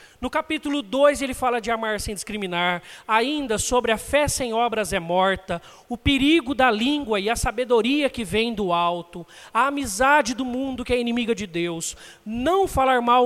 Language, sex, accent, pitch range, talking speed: Portuguese, male, Brazilian, 225-300 Hz, 180 wpm